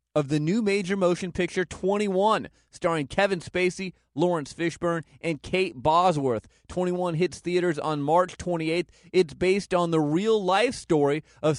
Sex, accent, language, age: male, American, English, 30-49